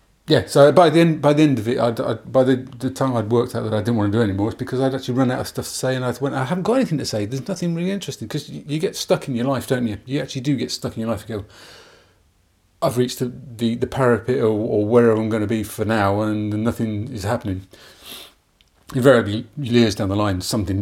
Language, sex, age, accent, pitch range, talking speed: English, male, 40-59, British, 105-125 Hz, 280 wpm